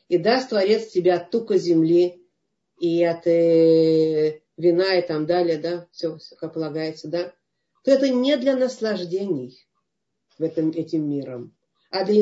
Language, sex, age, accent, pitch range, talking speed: Russian, female, 40-59, native, 150-185 Hz, 140 wpm